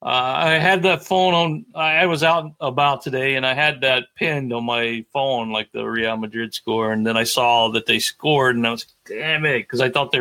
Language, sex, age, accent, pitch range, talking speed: English, male, 40-59, American, 125-170 Hz, 240 wpm